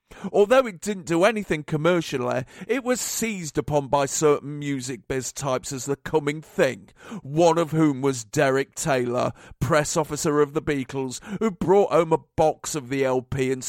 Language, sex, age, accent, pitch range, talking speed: English, male, 40-59, British, 135-170 Hz, 170 wpm